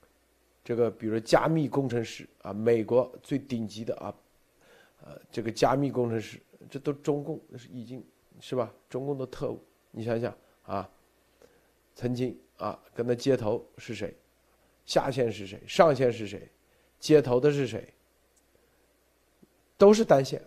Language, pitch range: Chinese, 115-150 Hz